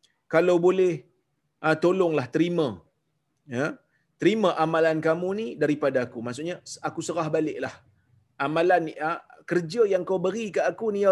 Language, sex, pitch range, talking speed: Malayalam, male, 145-190 Hz, 135 wpm